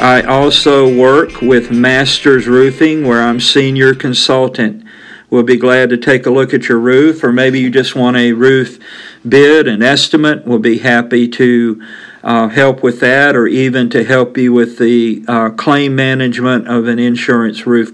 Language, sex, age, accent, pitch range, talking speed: English, male, 50-69, American, 120-140 Hz, 175 wpm